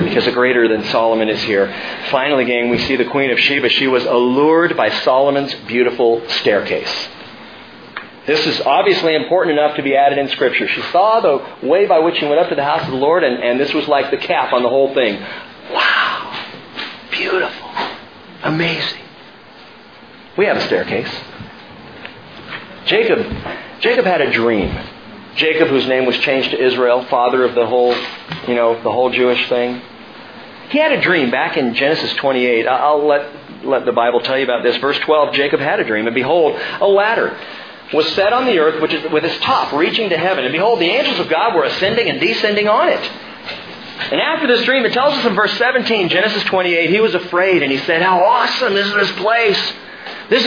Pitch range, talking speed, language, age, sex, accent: 125-210 Hz, 195 wpm, English, 40-59, male, American